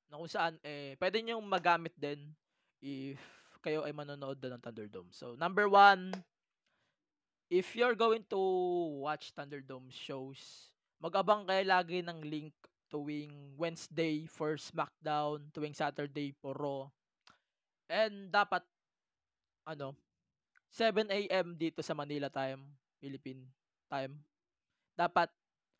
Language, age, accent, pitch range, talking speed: English, 20-39, Filipino, 140-175 Hz, 110 wpm